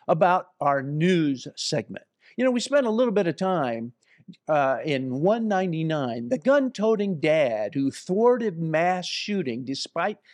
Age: 50-69